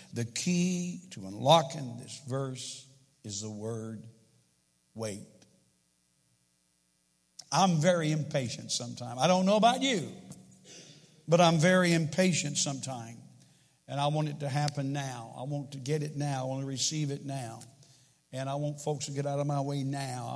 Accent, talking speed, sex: American, 160 wpm, male